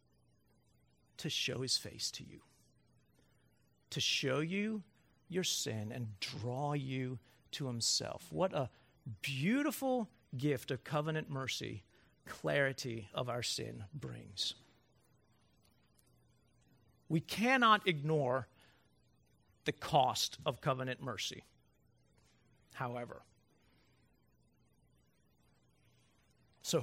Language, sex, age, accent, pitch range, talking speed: English, male, 50-69, American, 130-170 Hz, 85 wpm